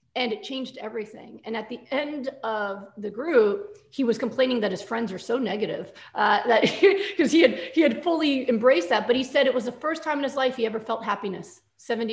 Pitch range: 220-285 Hz